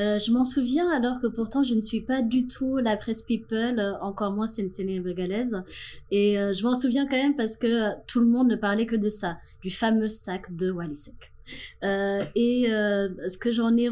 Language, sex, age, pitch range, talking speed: French, female, 20-39, 195-230 Hz, 225 wpm